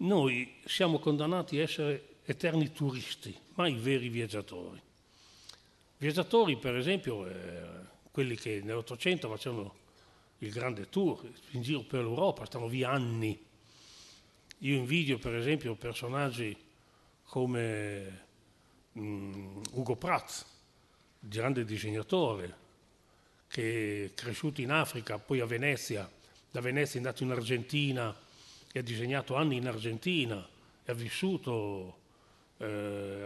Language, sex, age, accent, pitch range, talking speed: Italian, male, 40-59, native, 110-145 Hz, 115 wpm